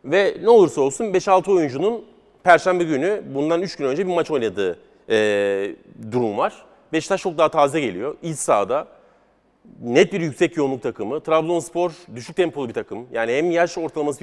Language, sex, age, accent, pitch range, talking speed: Turkish, male, 40-59, native, 140-180 Hz, 160 wpm